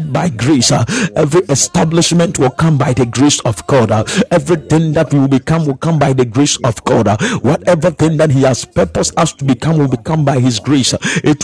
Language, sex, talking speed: English, male, 200 wpm